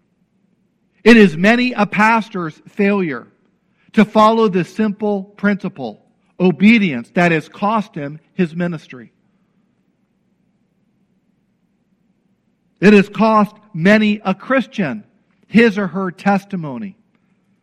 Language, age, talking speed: English, 50-69, 95 wpm